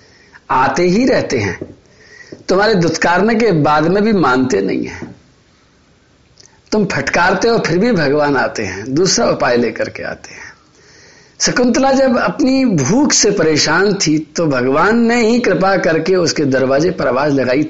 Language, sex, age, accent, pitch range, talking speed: Hindi, male, 50-69, native, 135-205 Hz, 155 wpm